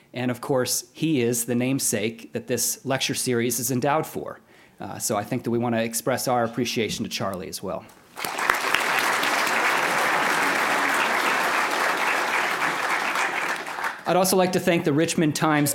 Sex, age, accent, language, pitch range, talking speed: male, 40-59, American, English, 130-155 Hz, 140 wpm